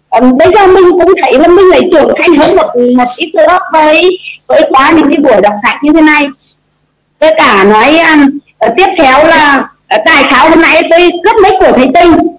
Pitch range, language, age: 275-340 Hz, Vietnamese, 20-39